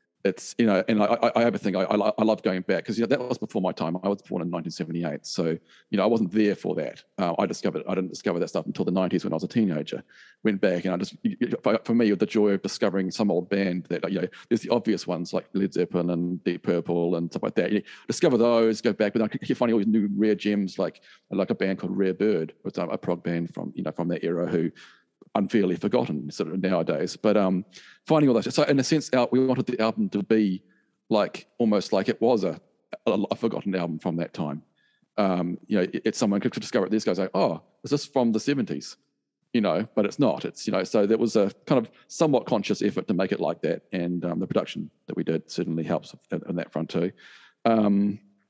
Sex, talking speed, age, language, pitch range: male, 260 wpm, 40-59, English, 90-115 Hz